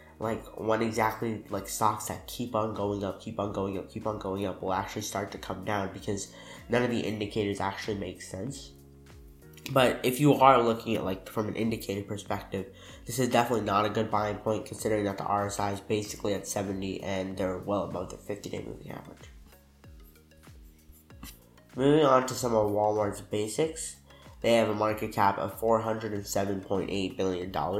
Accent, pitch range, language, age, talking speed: American, 95-110 Hz, English, 10-29, 175 wpm